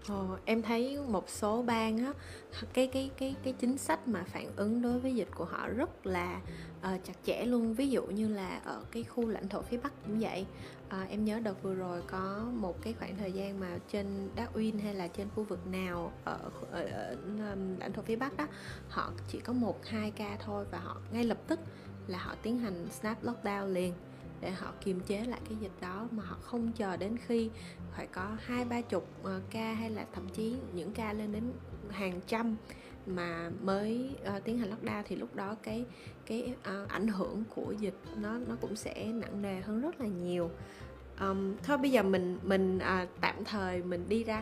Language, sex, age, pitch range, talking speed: Vietnamese, female, 20-39, 185-230 Hz, 205 wpm